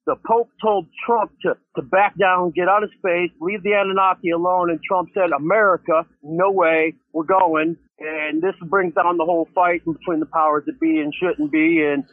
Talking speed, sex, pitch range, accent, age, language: 205 wpm, male, 180-210 Hz, American, 40-59, English